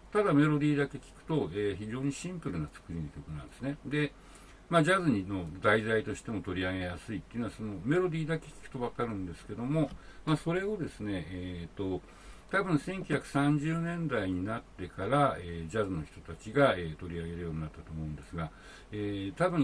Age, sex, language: 60-79, male, Japanese